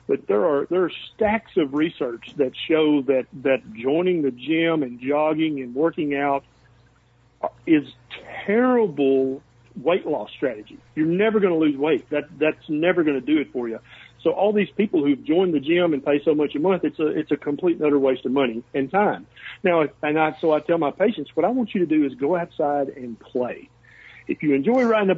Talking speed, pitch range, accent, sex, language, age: 215 wpm, 135-190 Hz, American, male, English, 50-69